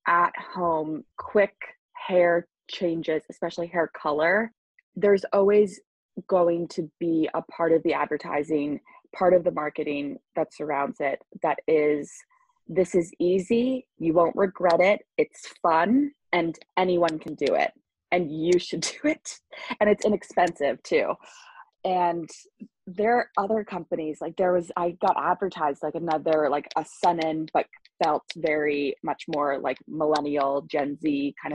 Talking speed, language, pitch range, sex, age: 145 wpm, English, 155-195 Hz, female, 20-39